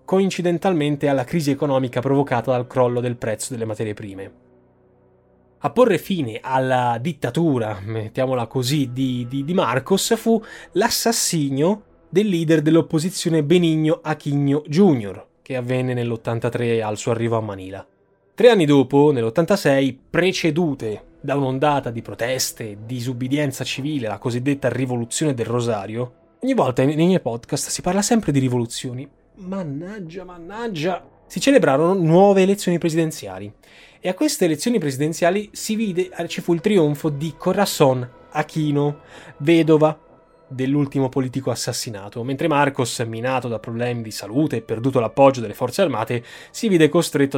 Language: Italian